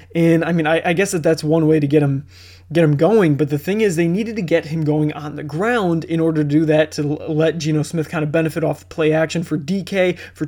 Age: 20-39